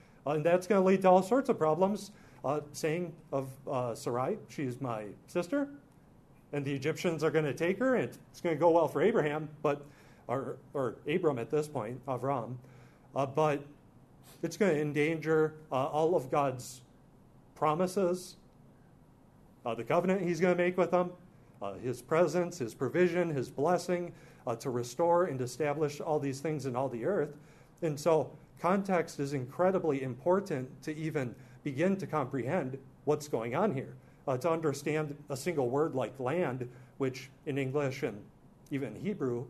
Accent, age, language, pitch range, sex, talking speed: American, 40-59, English, 130-160 Hz, male, 170 wpm